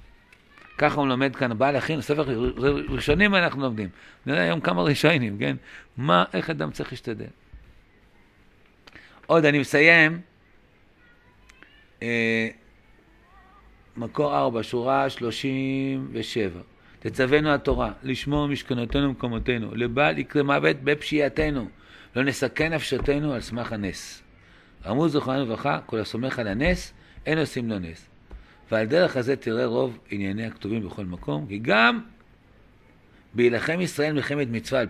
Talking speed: 120 wpm